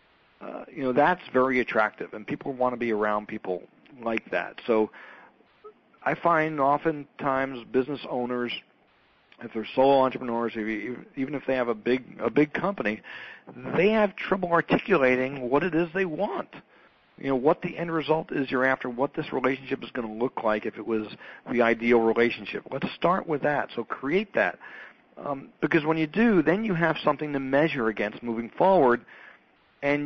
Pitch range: 115-150 Hz